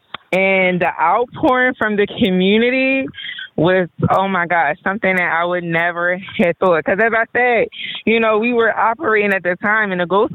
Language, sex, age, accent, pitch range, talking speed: English, female, 20-39, American, 155-190 Hz, 185 wpm